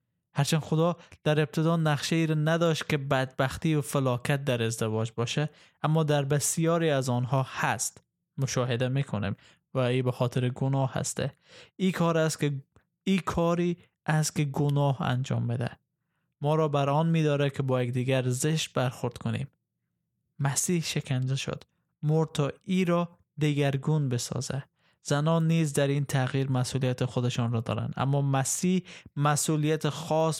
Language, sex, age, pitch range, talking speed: Persian, male, 20-39, 125-160 Hz, 145 wpm